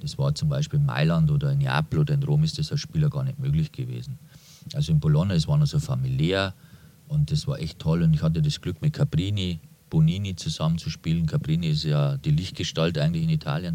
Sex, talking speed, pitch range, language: male, 225 wpm, 115-155 Hz, German